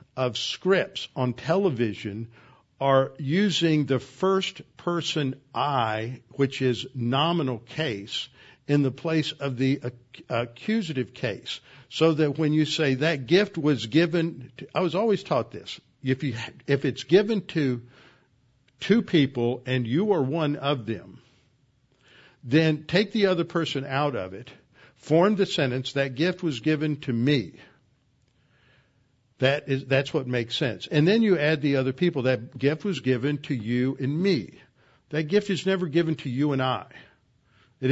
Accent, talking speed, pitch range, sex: American, 150 wpm, 125-160 Hz, male